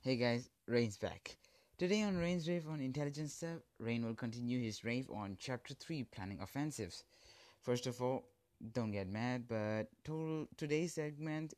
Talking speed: 155 wpm